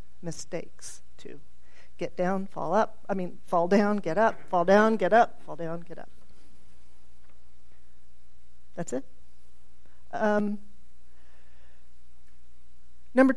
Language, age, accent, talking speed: English, 40-59, American, 110 wpm